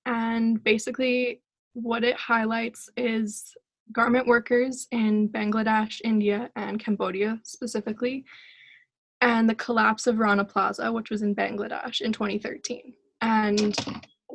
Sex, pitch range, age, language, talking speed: female, 210-240 Hz, 10-29, English, 110 wpm